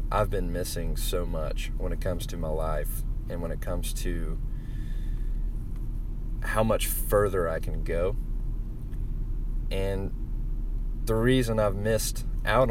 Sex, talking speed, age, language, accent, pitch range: male, 130 wpm, 30-49, English, American, 90-115 Hz